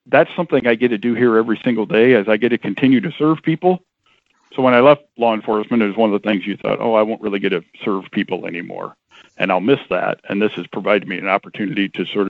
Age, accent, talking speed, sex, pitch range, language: 50-69, American, 265 wpm, male, 105-130 Hz, English